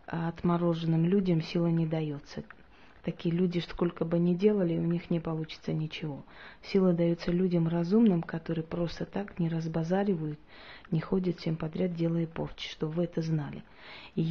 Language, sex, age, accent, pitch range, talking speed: Russian, female, 30-49, native, 165-180 Hz, 155 wpm